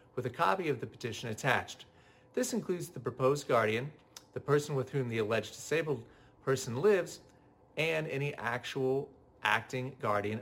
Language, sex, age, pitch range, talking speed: English, male, 40-59, 110-145 Hz, 150 wpm